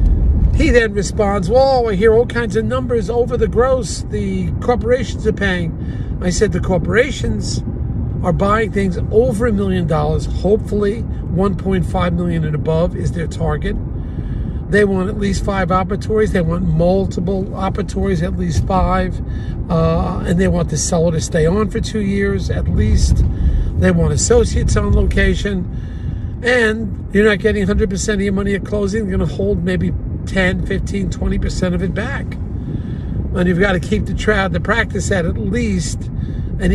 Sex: male